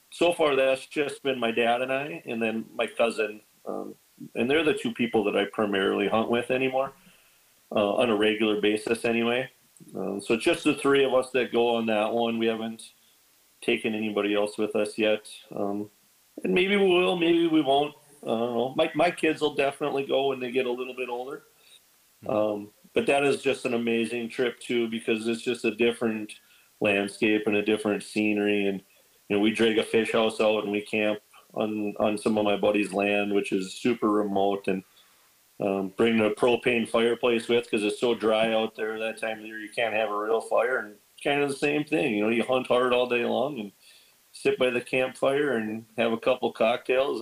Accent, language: American, English